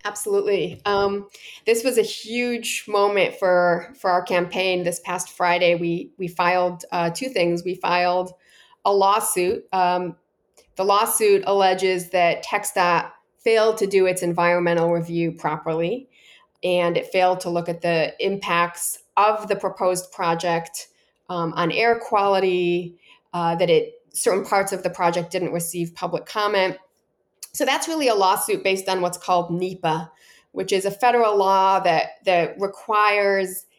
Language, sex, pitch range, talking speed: English, female, 175-205 Hz, 145 wpm